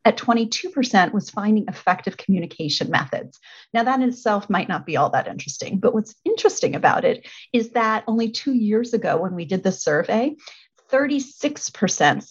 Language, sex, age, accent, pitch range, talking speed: English, female, 40-59, American, 185-235 Hz, 165 wpm